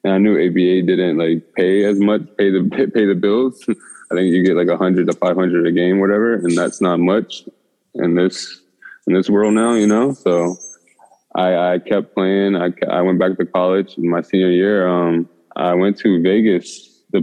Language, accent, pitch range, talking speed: English, American, 90-100 Hz, 205 wpm